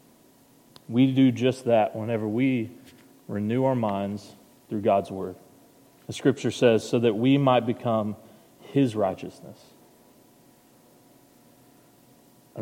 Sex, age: male, 30-49